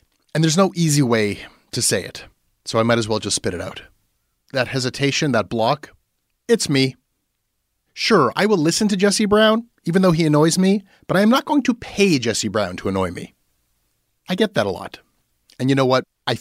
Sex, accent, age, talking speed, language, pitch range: male, American, 30-49, 210 wpm, English, 115-170 Hz